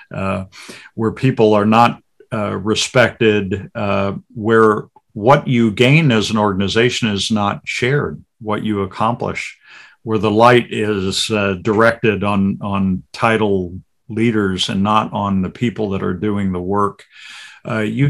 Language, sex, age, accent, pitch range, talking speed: English, male, 50-69, American, 100-115 Hz, 145 wpm